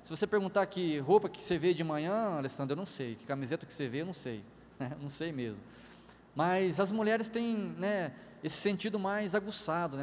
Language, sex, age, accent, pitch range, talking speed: Portuguese, male, 20-39, Brazilian, 140-190 Hz, 215 wpm